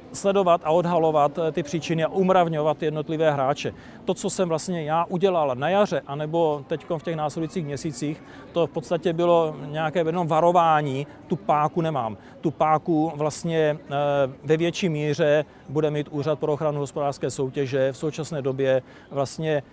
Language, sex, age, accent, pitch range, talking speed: Czech, male, 40-59, native, 145-170 Hz, 150 wpm